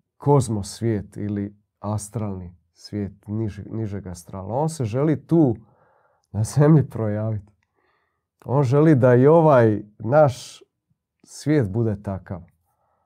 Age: 40-59